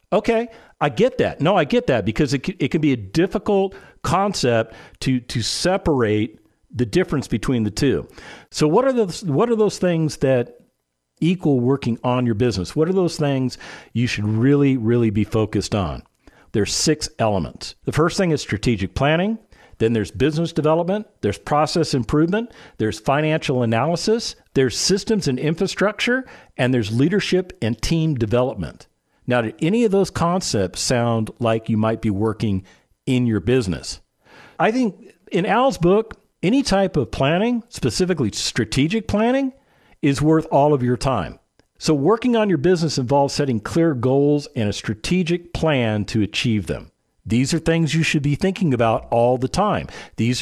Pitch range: 115-180 Hz